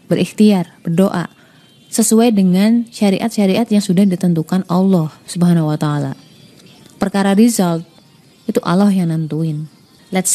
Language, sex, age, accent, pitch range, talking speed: Indonesian, female, 20-39, native, 175-235 Hz, 110 wpm